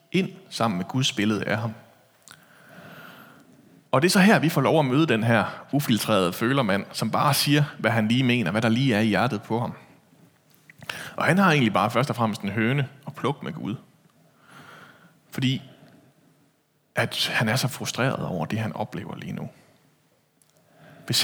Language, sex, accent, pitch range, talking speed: Danish, male, native, 115-150 Hz, 180 wpm